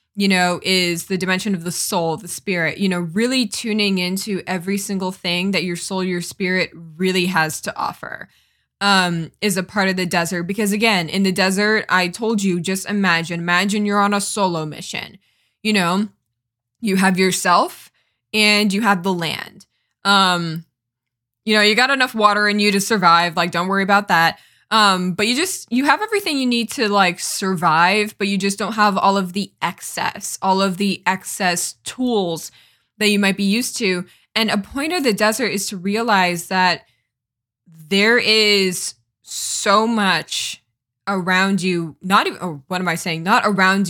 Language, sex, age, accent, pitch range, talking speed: English, female, 10-29, American, 175-210 Hz, 180 wpm